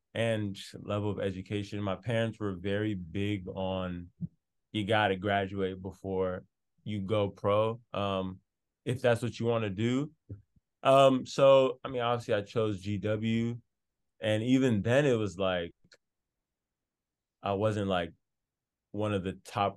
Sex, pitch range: male, 95-115 Hz